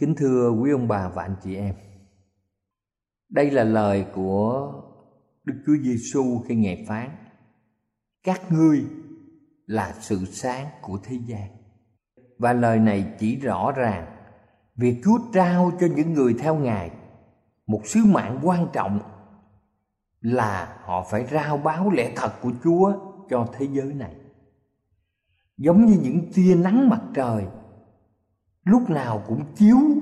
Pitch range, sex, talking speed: 110-170 Hz, male, 140 wpm